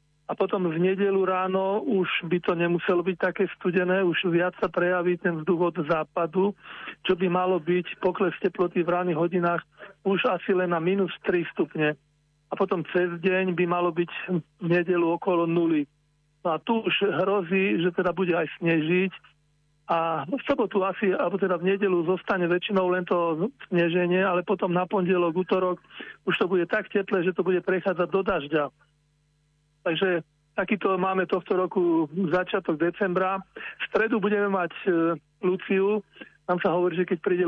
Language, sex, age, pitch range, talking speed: Slovak, male, 40-59, 170-190 Hz, 165 wpm